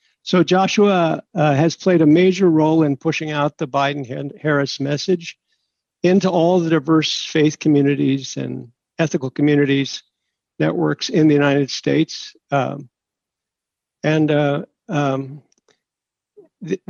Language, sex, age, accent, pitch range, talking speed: English, male, 60-79, American, 140-160 Hz, 120 wpm